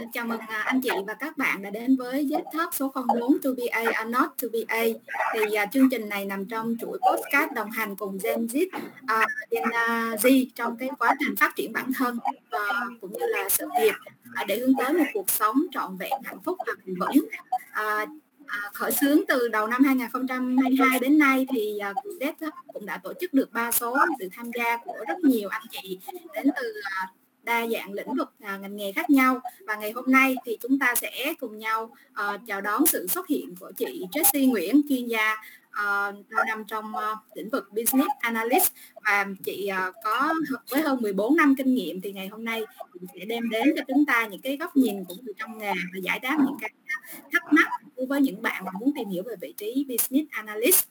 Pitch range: 215-285 Hz